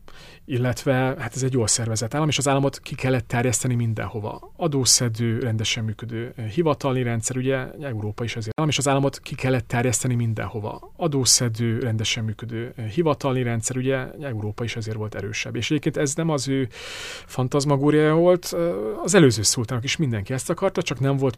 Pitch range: 115-150 Hz